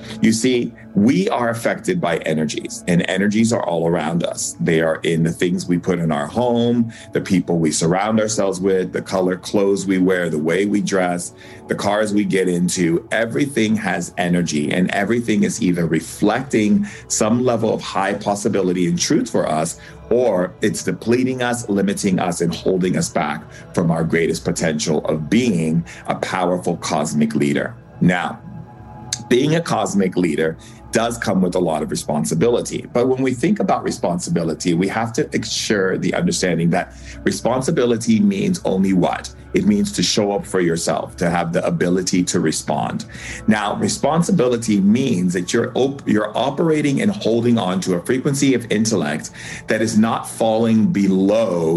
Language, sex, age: English, male, 40-59